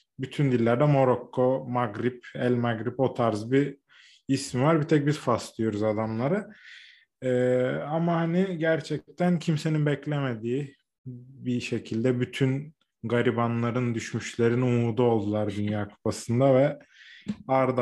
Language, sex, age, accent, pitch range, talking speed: Turkish, male, 20-39, native, 115-140 Hz, 115 wpm